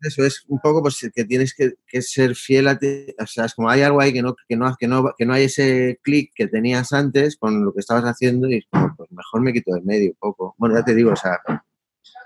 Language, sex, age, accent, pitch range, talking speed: Spanish, male, 30-49, Spanish, 110-130 Hz, 265 wpm